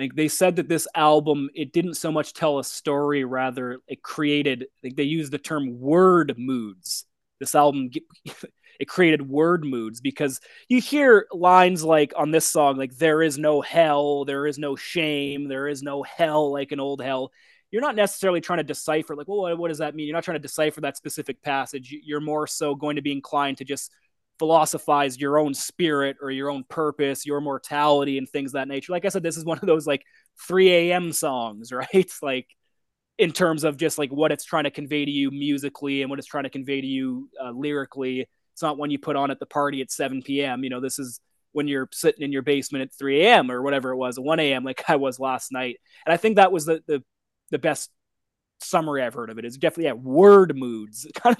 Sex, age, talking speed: male, 20-39, 225 wpm